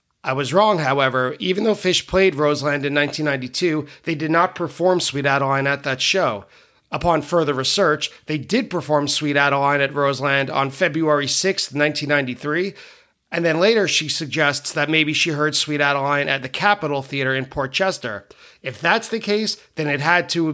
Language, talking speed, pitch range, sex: English, 185 wpm, 140-175 Hz, male